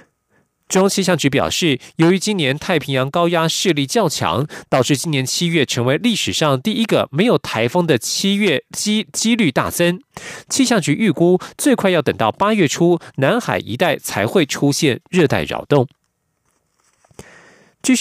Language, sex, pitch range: German, male, 140-195 Hz